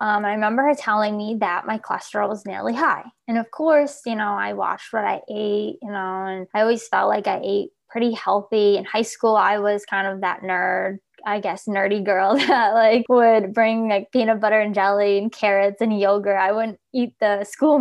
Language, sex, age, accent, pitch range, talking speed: English, female, 20-39, American, 195-230 Hz, 215 wpm